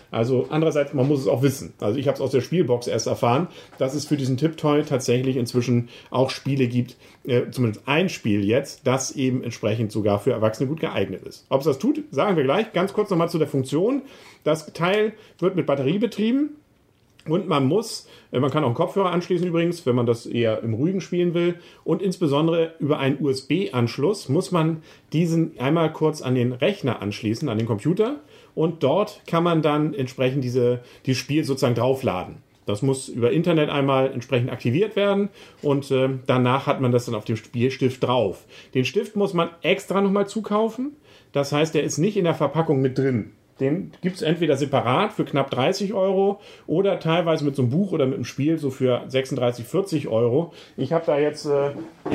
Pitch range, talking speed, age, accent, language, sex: 130-175 Hz, 195 wpm, 40-59, German, German, male